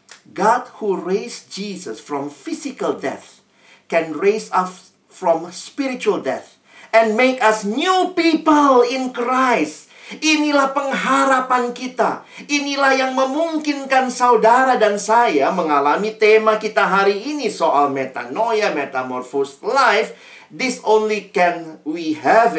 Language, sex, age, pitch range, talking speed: Indonesian, male, 50-69, 160-255 Hz, 115 wpm